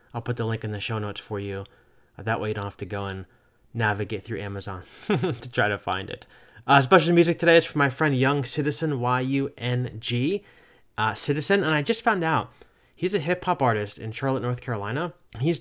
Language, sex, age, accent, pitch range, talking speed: English, male, 20-39, American, 115-150 Hz, 205 wpm